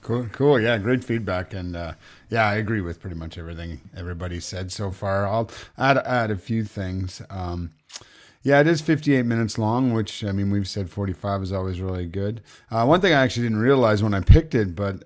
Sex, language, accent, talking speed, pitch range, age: male, English, American, 210 wpm, 95-120 Hz, 40-59